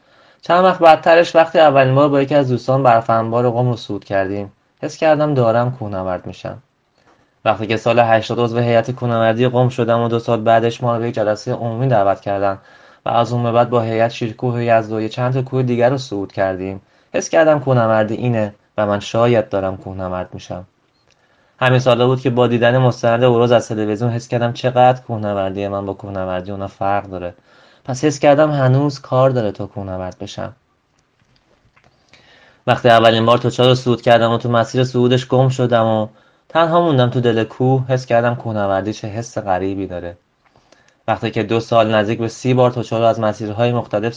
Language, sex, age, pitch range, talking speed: Persian, male, 20-39, 105-125 Hz, 180 wpm